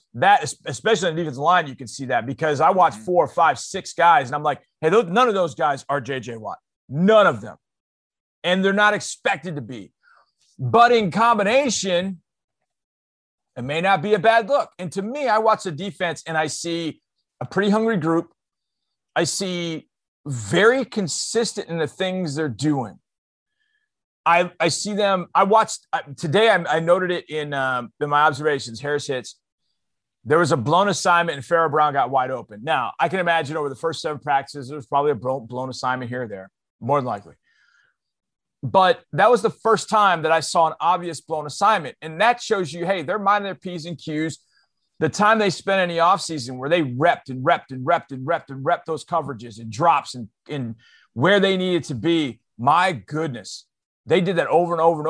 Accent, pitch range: American, 145-195 Hz